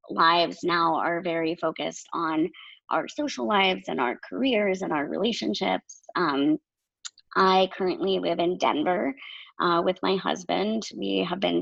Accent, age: American, 20-39